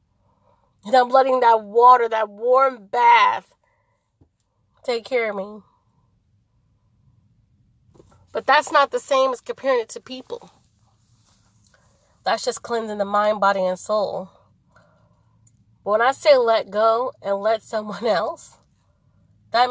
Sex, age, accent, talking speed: female, 20-39, American, 120 wpm